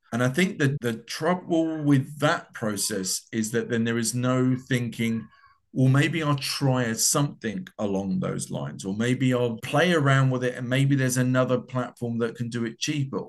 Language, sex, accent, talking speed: English, male, British, 185 wpm